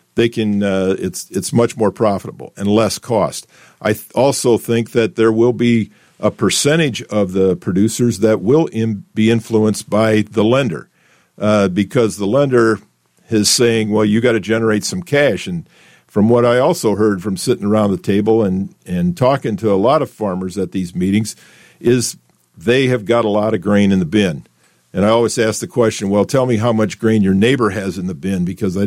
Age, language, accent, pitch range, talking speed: 50-69, English, American, 105-120 Hz, 205 wpm